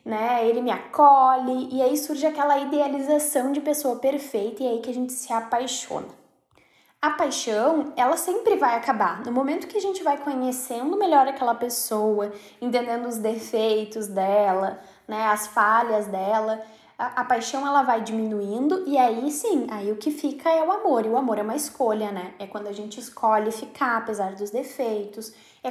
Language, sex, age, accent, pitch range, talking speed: Portuguese, female, 10-29, Brazilian, 220-275 Hz, 175 wpm